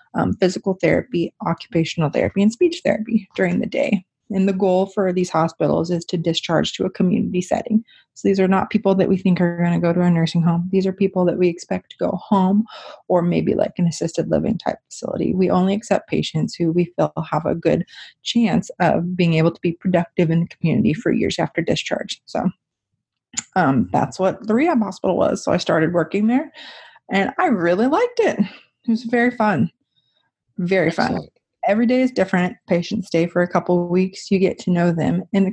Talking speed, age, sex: 210 wpm, 30-49, female